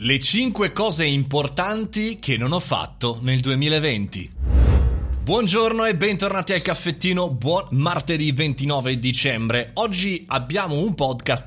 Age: 20-39